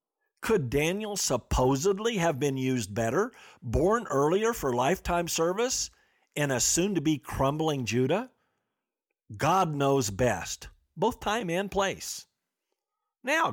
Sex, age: male, 50-69